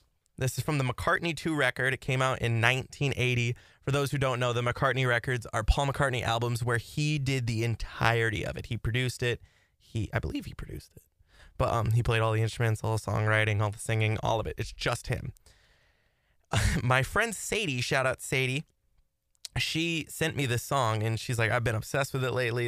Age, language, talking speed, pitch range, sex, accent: 20-39, English, 210 wpm, 115-140 Hz, male, American